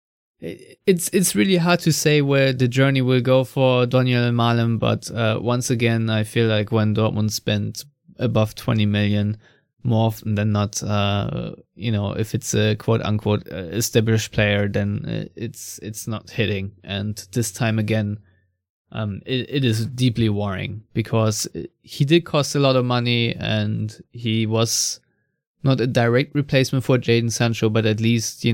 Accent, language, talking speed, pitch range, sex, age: German, English, 165 wpm, 110-130 Hz, male, 20-39